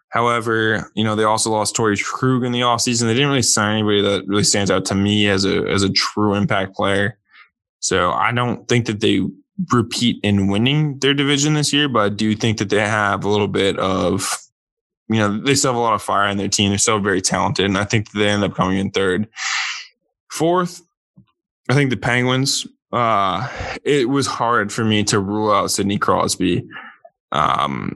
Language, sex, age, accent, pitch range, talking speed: English, male, 10-29, American, 100-120 Hz, 205 wpm